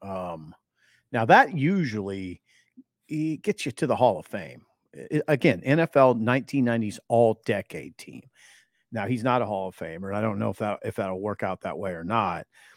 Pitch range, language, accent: 100-130 Hz, English, American